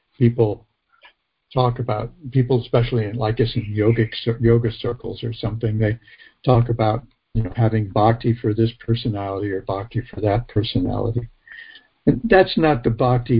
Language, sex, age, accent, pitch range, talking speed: English, male, 60-79, American, 115-130 Hz, 150 wpm